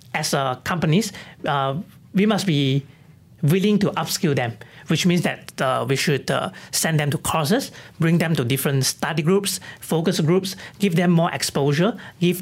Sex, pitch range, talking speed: male, 140-185 Hz, 170 wpm